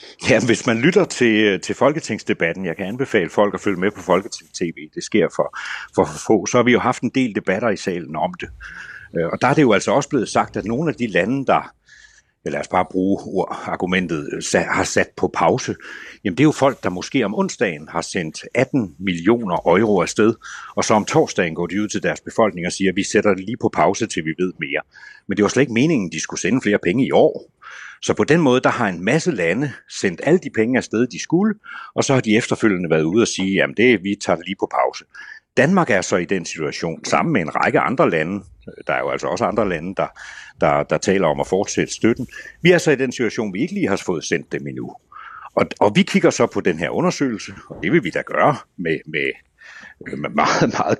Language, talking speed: Danish, 245 wpm